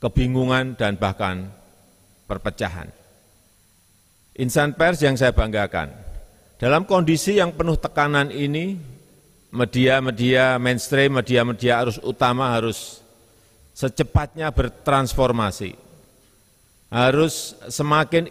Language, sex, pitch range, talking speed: Indonesian, male, 105-145 Hz, 80 wpm